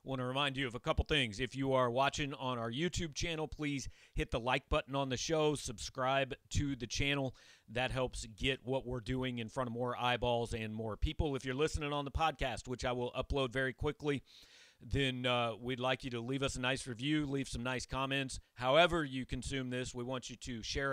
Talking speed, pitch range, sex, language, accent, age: 225 wpm, 125-145 Hz, male, English, American, 40-59